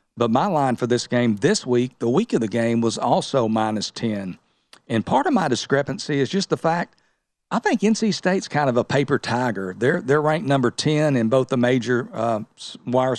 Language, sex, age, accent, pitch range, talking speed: English, male, 50-69, American, 120-140 Hz, 210 wpm